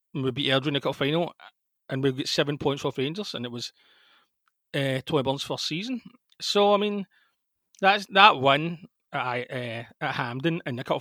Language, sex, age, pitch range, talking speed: English, male, 30-49, 130-160 Hz, 190 wpm